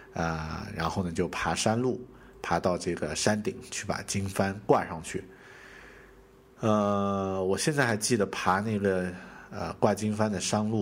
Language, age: Chinese, 50-69